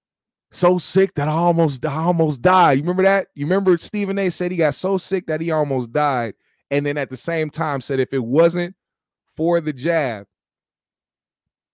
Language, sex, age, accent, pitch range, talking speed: English, male, 30-49, American, 140-195 Hz, 190 wpm